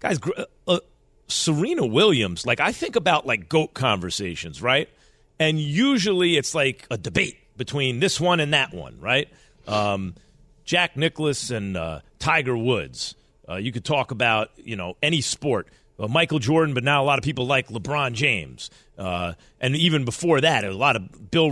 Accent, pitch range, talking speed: American, 105-155 Hz, 175 wpm